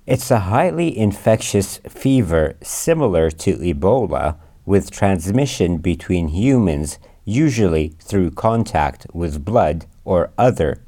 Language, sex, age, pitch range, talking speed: English, male, 50-69, 80-105 Hz, 105 wpm